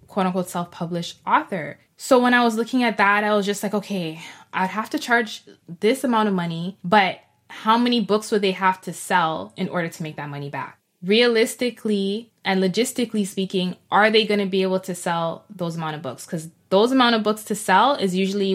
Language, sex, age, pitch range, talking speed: English, female, 20-39, 180-215 Hz, 205 wpm